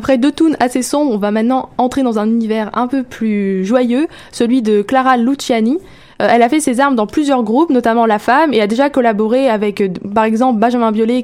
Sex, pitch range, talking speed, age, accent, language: female, 225-265 Hz, 220 wpm, 20-39, French, French